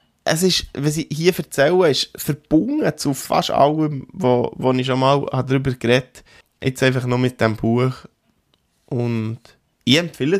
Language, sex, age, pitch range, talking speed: German, male, 20-39, 110-135 Hz, 160 wpm